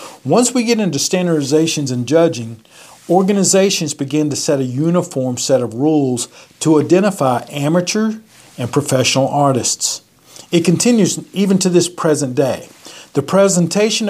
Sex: male